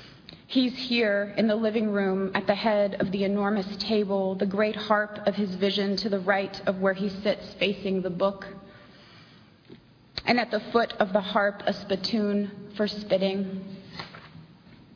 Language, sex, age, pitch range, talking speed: English, female, 30-49, 190-210 Hz, 160 wpm